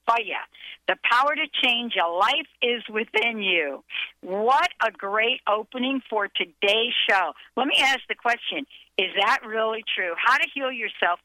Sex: female